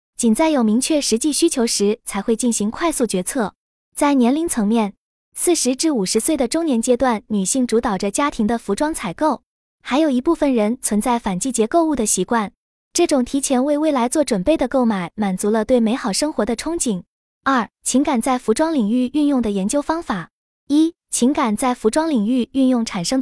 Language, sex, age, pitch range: Chinese, female, 20-39, 220-295 Hz